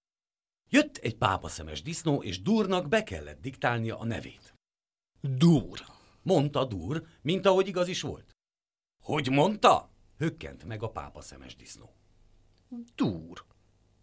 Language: Hungarian